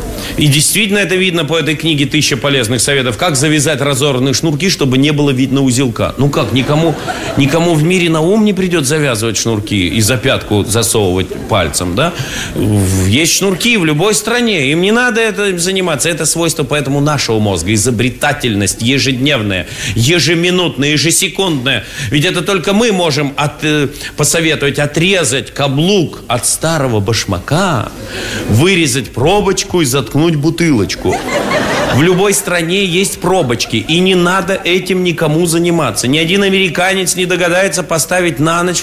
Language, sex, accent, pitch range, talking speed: Russian, male, native, 130-190 Hz, 140 wpm